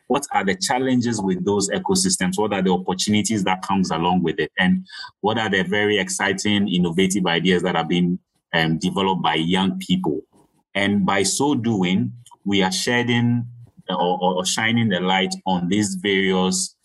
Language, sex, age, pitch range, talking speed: English, male, 30-49, 90-105 Hz, 165 wpm